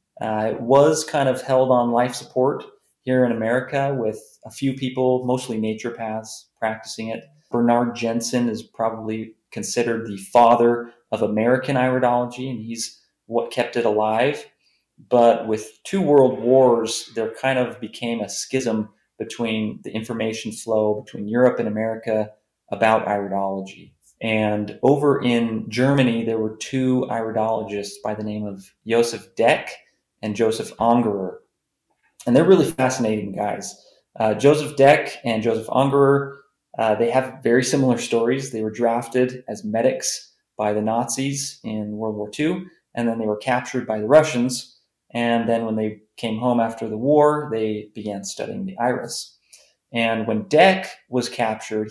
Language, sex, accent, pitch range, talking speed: English, male, American, 110-130 Hz, 150 wpm